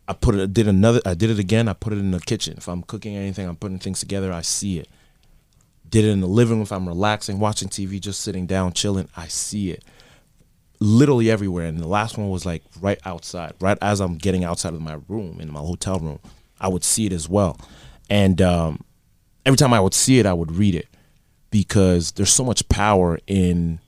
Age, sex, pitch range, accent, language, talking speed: 30-49, male, 90-105 Hz, American, English, 225 wpm